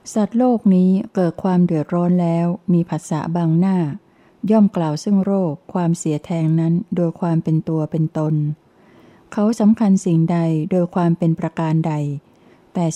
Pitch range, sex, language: 160-190 Hz, female, Thai